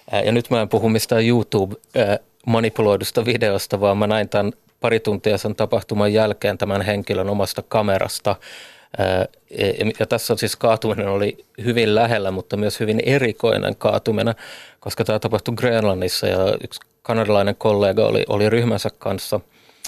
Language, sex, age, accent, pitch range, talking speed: Finnish, male, 30-49, native, 100-115 Hz, 140 wpm